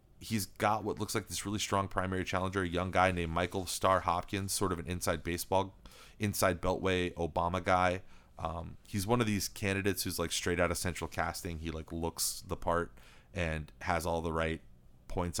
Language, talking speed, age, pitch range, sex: English, 195 wpm, 30-49, 85-100 Hz, male